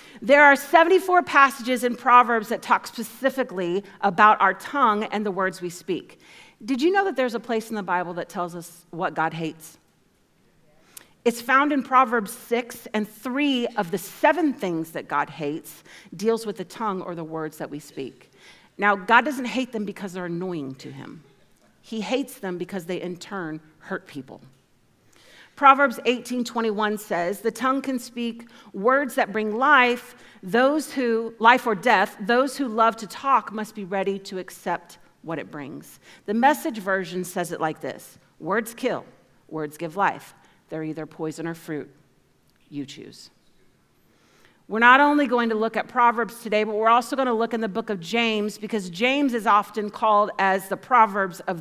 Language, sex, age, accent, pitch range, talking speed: English, female, 40-59, American, 185-245 Hz, 180 wpm